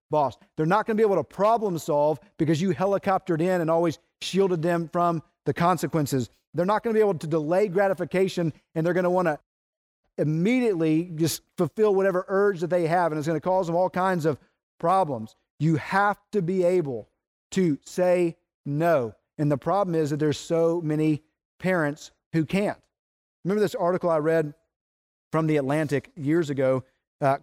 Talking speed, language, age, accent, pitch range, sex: 185 wpm, English, 40-59, American, 150-190 Hz, male